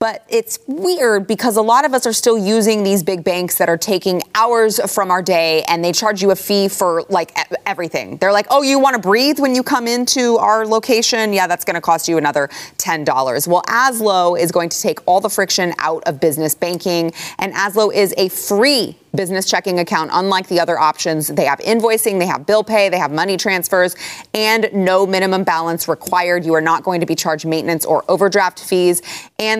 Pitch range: 165-215 Hz